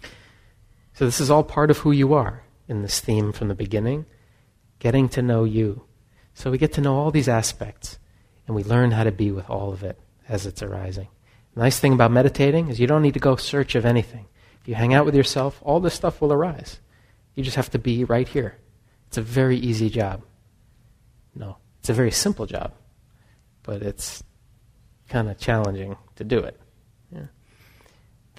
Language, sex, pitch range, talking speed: English, male, 110-140 Hz, 195 wpm